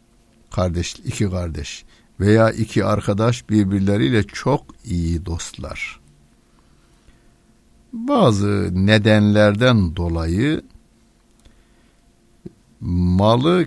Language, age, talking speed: Turkish, 60-79, 60 wpm